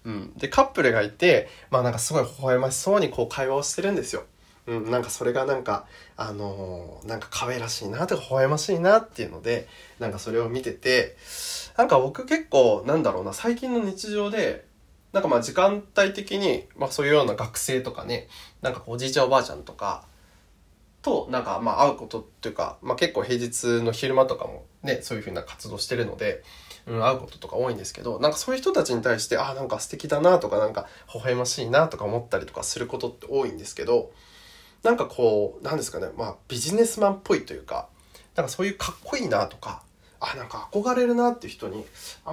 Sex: male